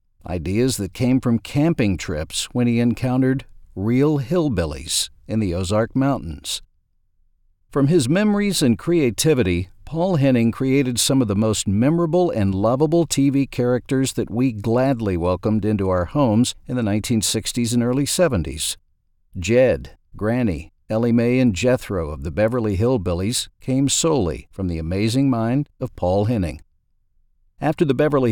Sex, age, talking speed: male, 50-69, 140 wpm